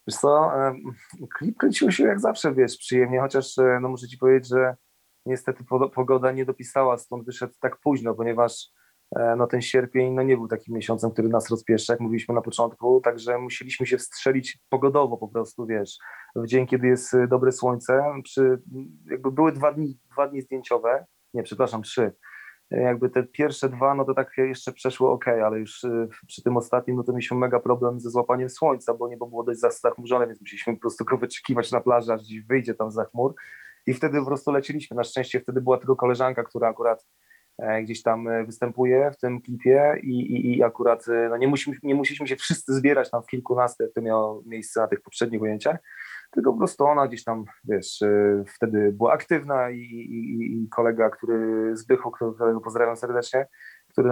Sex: male